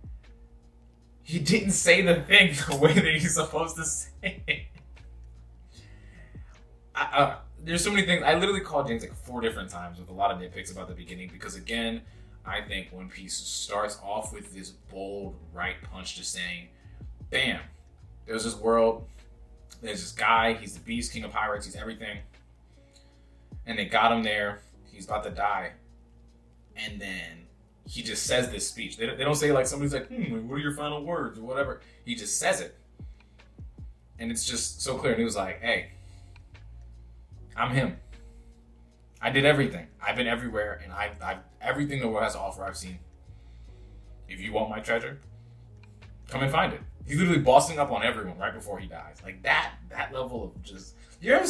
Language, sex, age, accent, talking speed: English, male, 20-39, American, 180 wpm